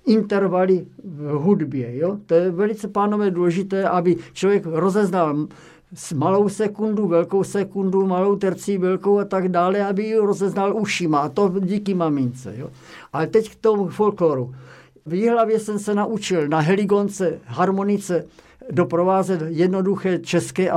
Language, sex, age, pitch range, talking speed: Czech, male, 60-79, 165-205 Hz, 135 wpm